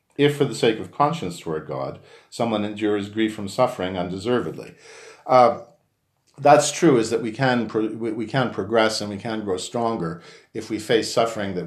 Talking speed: 180 wpm